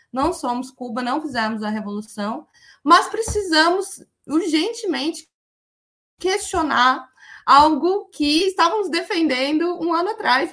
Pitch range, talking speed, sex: 235-335 Hz, 105 wpm, female